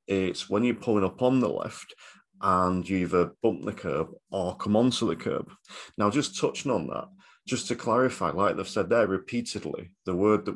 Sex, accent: male, British